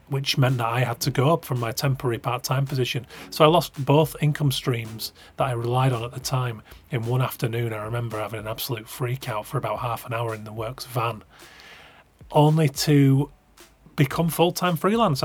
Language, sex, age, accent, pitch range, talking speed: English, male, 30-49, British, 120-150 Hz, 195 wpm